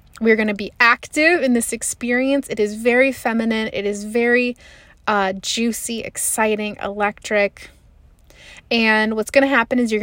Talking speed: 155 wpm